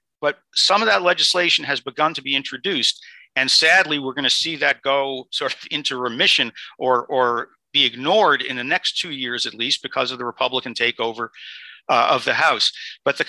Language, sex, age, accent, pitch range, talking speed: English, male, 50-69, American, 120-145 Hz, 200 wpm